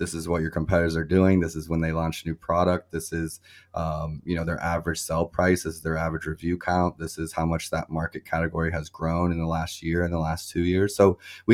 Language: English